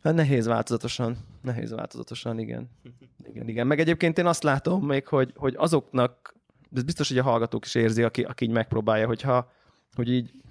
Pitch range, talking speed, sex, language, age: 120-140 Hz, 170 wpm, male, Hungarian, 20-39